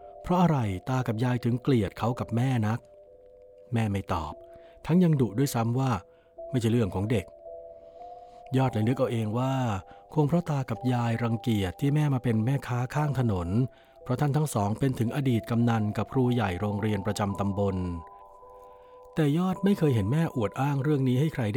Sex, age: male, 60-79